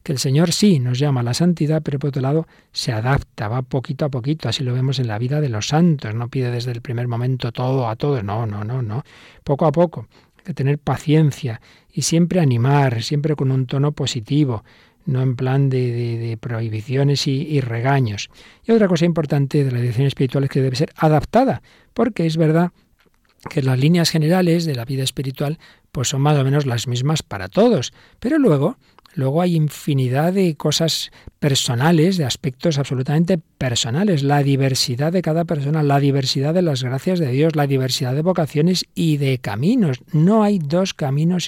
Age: 40-59